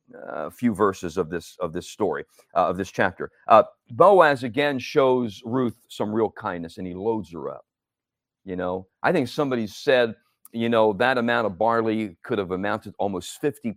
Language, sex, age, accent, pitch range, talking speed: English, male, 50-69, American, 105-150 Hz, 190 wpm